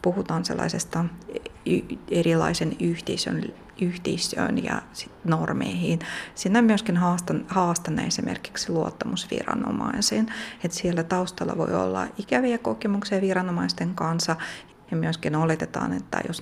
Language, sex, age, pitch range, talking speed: Finnish, female, 30-49, 160-195 Hz, 100 wpm